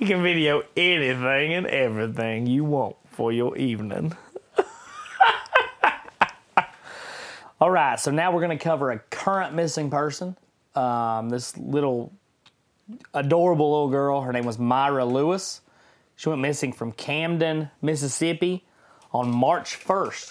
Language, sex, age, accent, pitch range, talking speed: English, male, 30-49, American, 125-165 Hz, 125 wpm